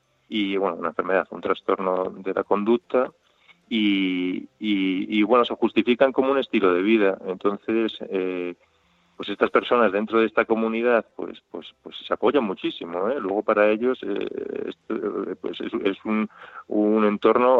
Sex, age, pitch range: male, 30-49, 95-110 Hz